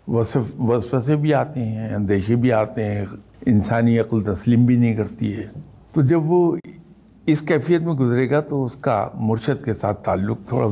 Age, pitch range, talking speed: 60-79, 100-130 Hz, 185 wpm